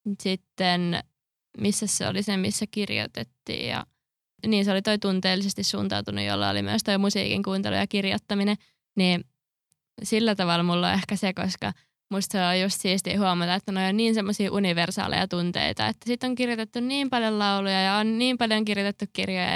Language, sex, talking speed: Finnish, female, 170 wpm